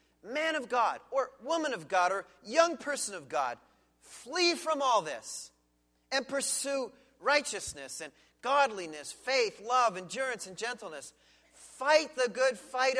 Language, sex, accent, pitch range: English, male, American, 175-265 Hz